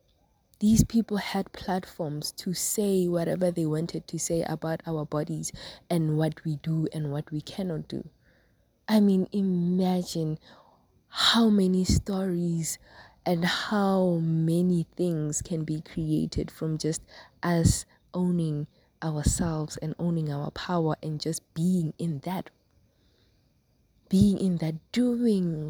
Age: 20-39